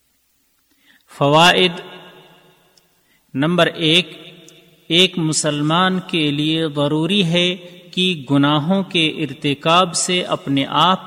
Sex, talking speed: male, 80 wpm